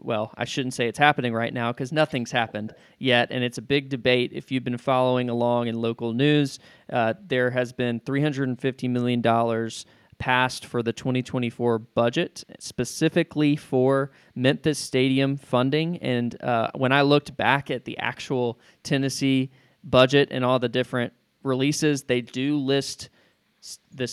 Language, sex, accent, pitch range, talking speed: English, male, American, 120-135 Hz, 150 wpm